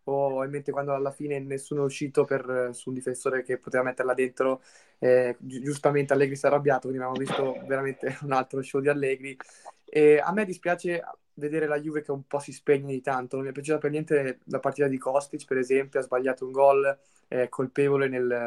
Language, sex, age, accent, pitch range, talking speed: Italian, male, 20-39, native, 130-150 Hz, 210 wpm